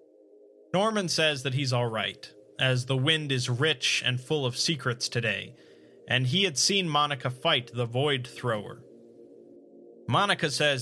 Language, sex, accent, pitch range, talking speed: English, male, American, 120-150 Hz, 140 wpm